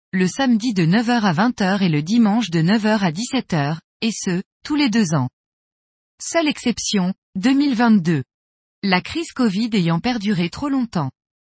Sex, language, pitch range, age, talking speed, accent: female, French, 185-250 Hz, 20-39, 150 wpm, French